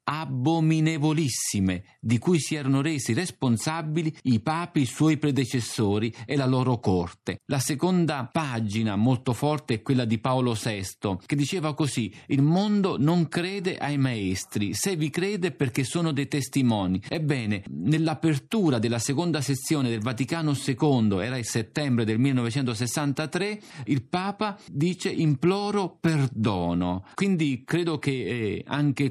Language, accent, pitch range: Italian, native, 120-160 Hz